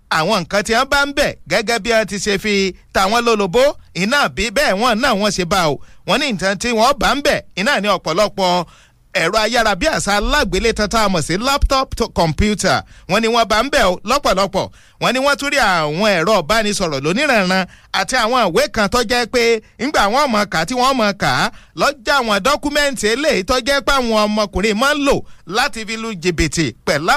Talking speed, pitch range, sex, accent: 155 wpm, 190-255 Hz, male, Nigerian